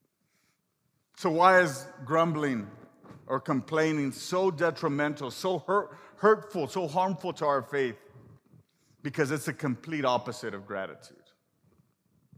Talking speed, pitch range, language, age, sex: 105 wpm, 155-205 Hz, English, 50-69, male